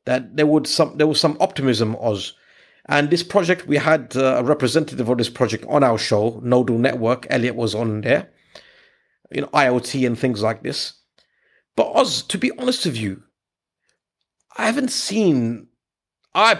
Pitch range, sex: 125-170 Hz, male